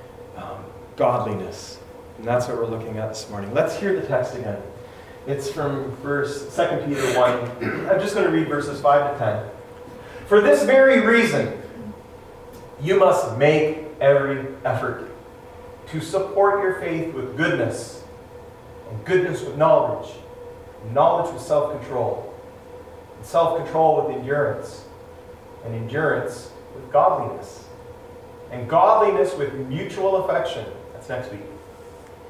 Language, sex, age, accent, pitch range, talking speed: English, male, 40-59, American, 135-190 Hz, 125 wpm